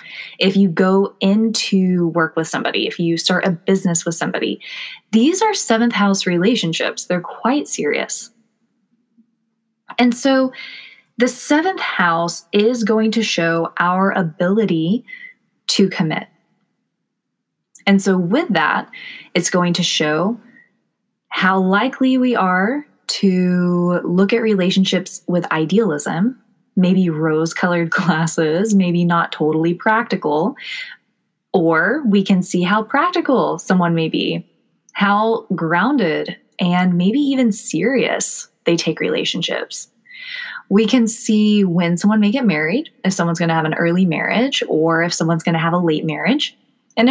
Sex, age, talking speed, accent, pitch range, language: female, 20-39, 130 wpm, American, 175-235 Hz, English